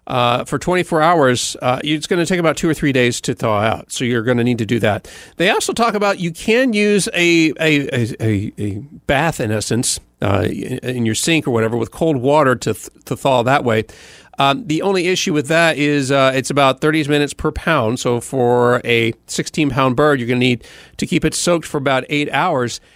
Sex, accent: male, American